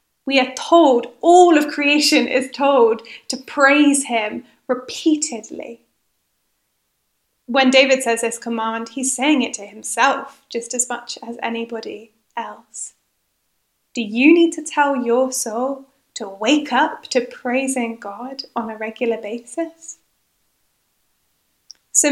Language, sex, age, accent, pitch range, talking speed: English, female, 10-29, British, 230-275 Hz, 125 wpm